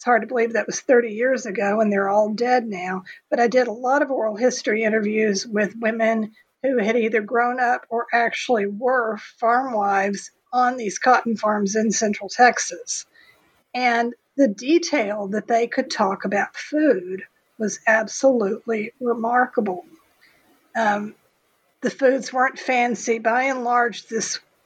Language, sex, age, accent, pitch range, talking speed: English, female, 50-69, American, 215-250 Hz, 150 wpm